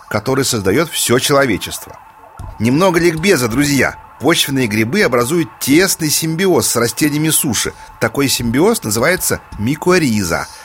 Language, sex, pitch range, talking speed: Russian, male, 125-170 Hz, 105 wpm